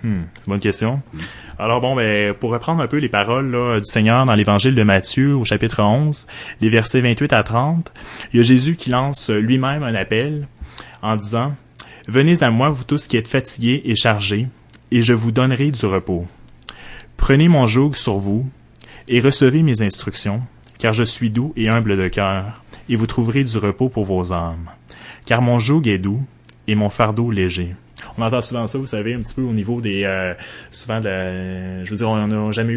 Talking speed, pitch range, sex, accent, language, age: 200 wpm, 100-120 Hz, male, Canadian, English, 30-49